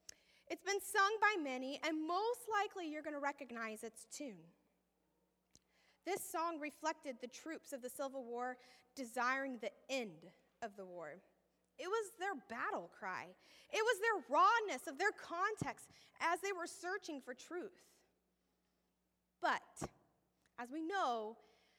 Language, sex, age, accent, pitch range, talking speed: English, female, 20-39, American, 220-325 Hz, 140 wpm